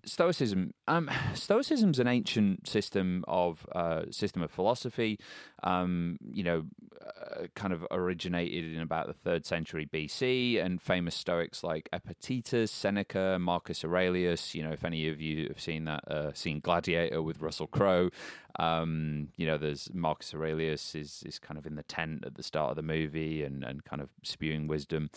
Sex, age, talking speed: male, 30-49, 175 wpm